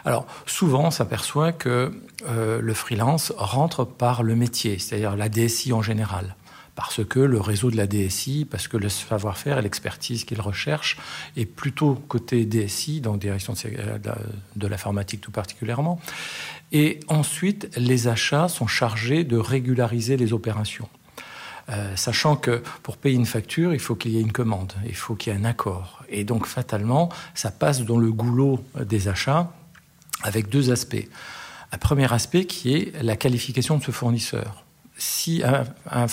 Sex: male